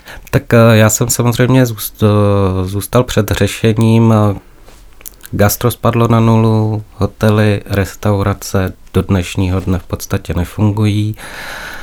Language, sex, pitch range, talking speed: Czech, male, 95-105 Hz, 100 wpm